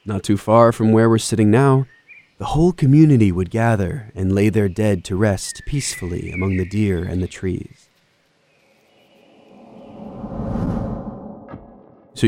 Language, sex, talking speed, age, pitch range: English, male, 130 wpm, 20-39, 100-135 Hz